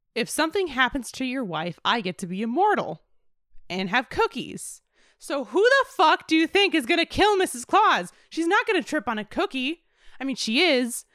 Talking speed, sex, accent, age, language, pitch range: 200 wpm, female, American, 20-39, English, 205-330 Hz